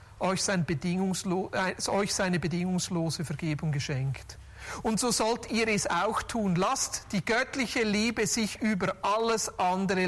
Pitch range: 175-235 Hz